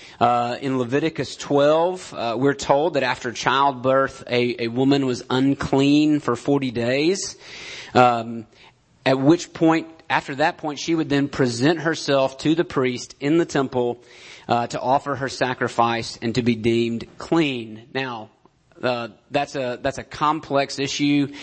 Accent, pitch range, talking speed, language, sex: American, 120-150 Hz, 150 wpm, English, male